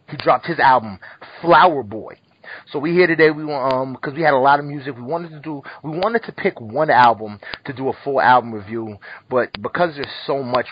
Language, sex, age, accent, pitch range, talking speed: English, male, 30-49, American, 120-150 Hz, 225 wpm